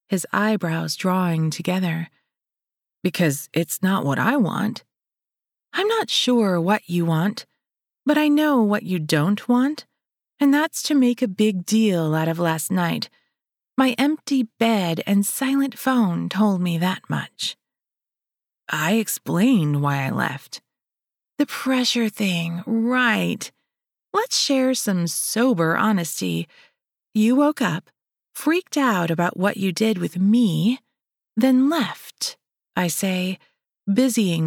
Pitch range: 175-245 Hz